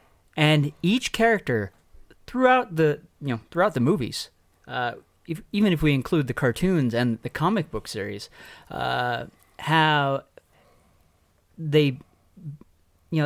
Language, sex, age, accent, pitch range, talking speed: English, male, 30-49, American, 120-155 Hz, 120 wpm